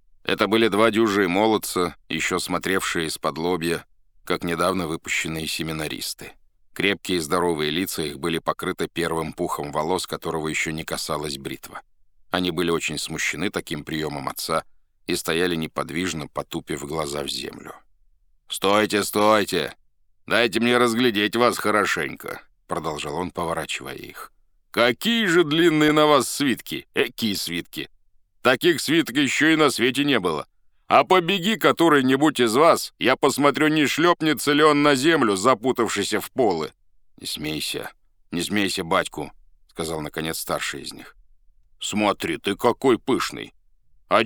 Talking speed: 135 wpm